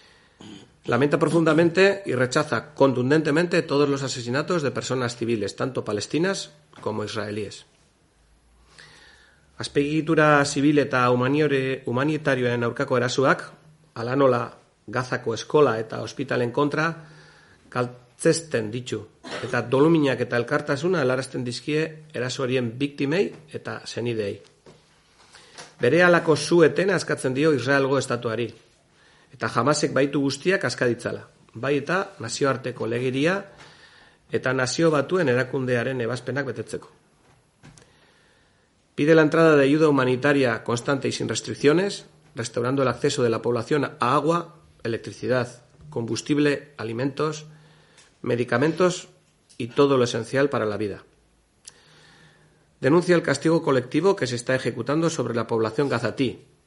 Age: 40-59